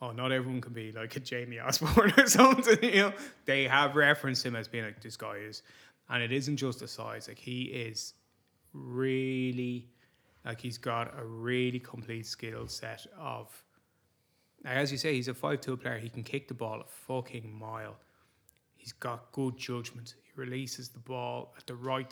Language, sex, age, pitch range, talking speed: English, male, 20-39, 120-135 Hz, 185 wpm